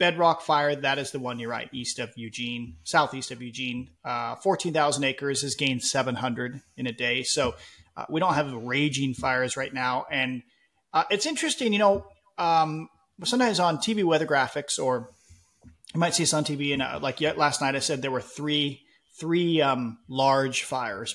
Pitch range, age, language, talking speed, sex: 125-150 Hz, 30-49, English, 185 wpm, male